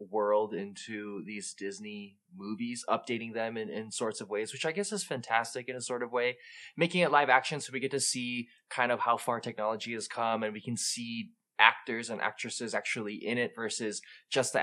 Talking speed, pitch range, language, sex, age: 210 wpm, 110-135 Hz, English, male, 20-39